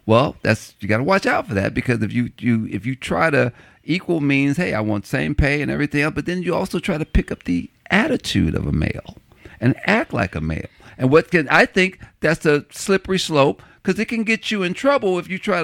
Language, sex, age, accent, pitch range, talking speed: English, male, 50-69, American, 110-175 Hz, 245 wpm